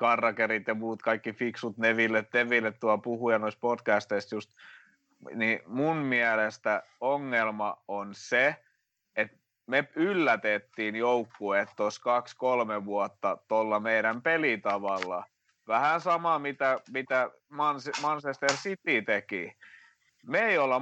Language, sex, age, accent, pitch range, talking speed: Finnish, male, 30-49, native, 110-155 Hz, 115 wpm